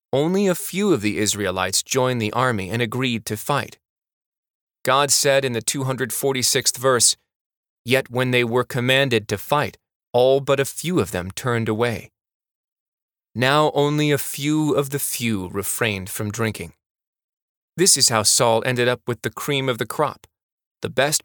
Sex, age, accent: male, 30-49, American